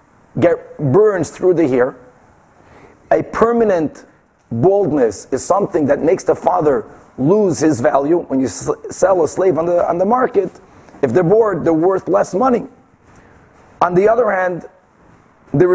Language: English